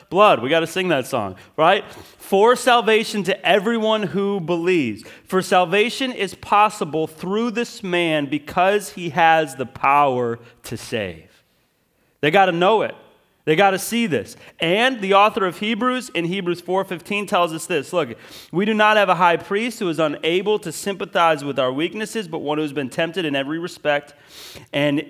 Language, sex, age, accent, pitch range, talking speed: English, male, 30-49, American, 140-200 Hz, 180 wpm